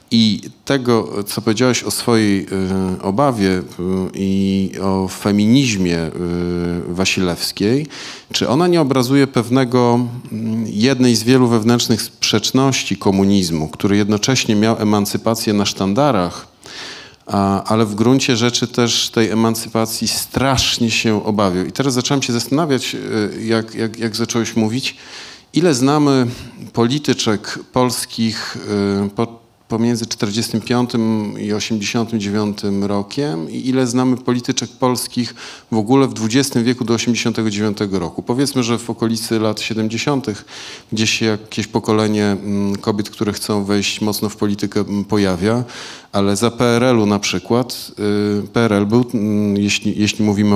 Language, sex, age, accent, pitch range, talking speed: Polish, male, 40-59, native, 100-120 Hz, 115 wpm